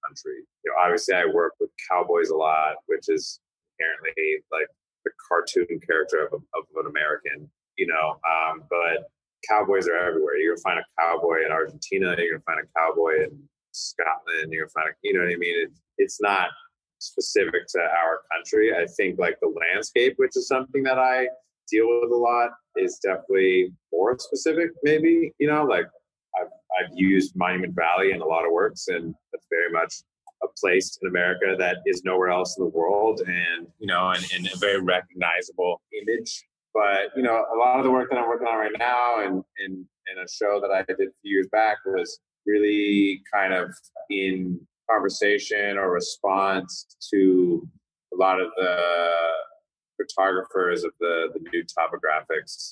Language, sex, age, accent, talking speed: English, male, 30-49, American, 180 wpm